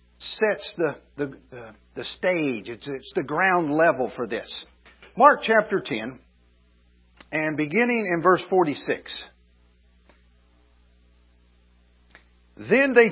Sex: male